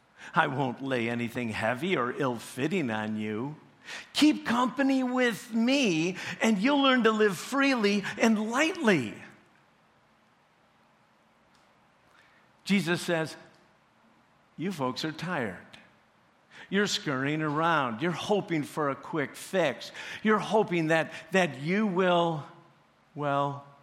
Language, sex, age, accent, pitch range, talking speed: English, male, 50-69, American, 145-210 Hz, 110 wpm